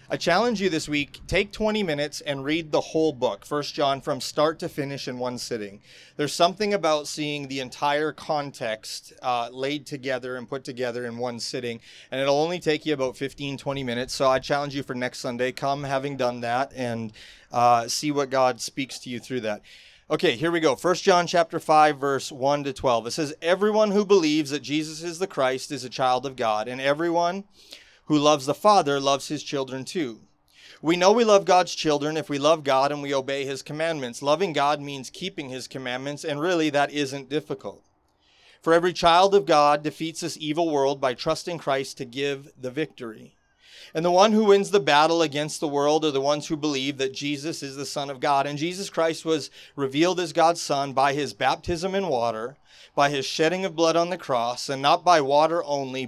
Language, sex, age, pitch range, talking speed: English, male, 30-49, 135-160 Hz, 210 wpm